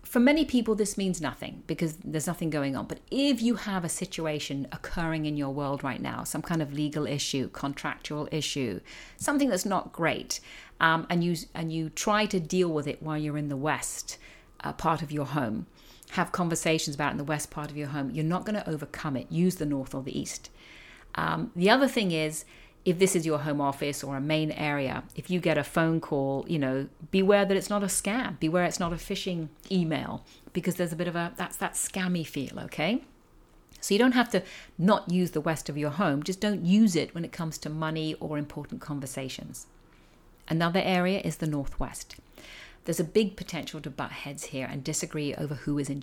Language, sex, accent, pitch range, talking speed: English, female, British, 145-185 Hz, 215 wpm